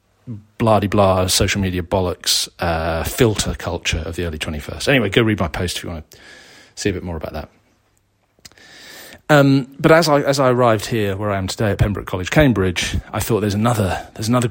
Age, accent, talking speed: 40-59, British, 200 wpm